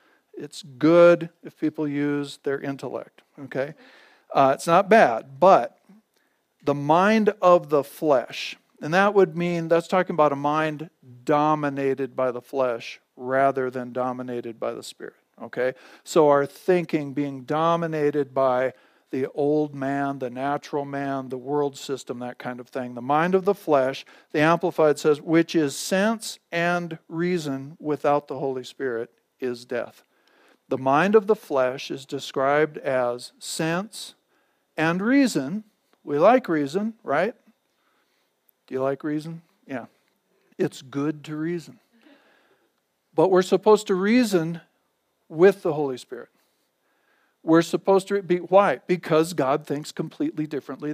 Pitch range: 140-180 Hz